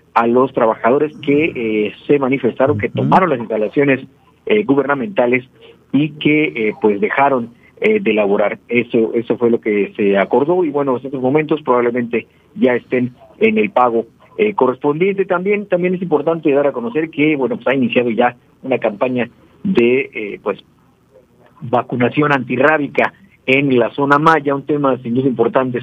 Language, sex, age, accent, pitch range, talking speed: Spanish, male, 50-69, Mexican, 115-145 Hz, 165 wpm